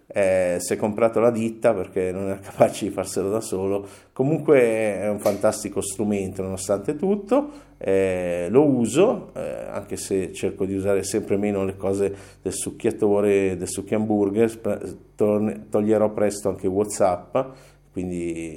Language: Italian